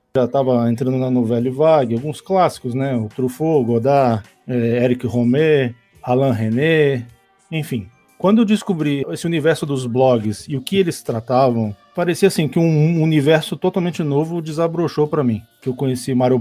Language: Portuguese